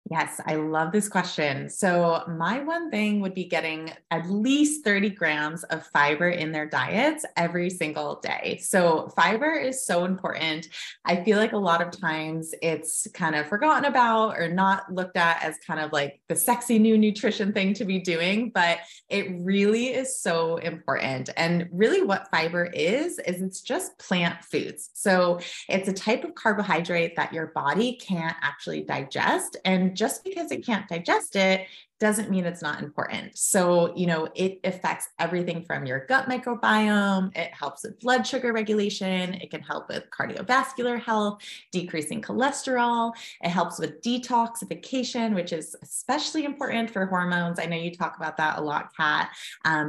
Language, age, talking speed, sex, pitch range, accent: English, 20-39, 170 wpm, female, 165-220 Hz, American